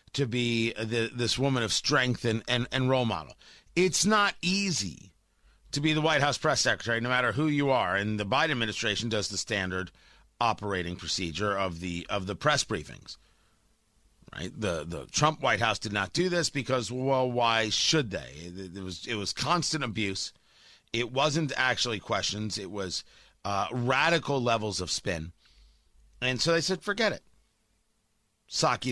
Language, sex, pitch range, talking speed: English, male, 100-170 Hz, 170 wpm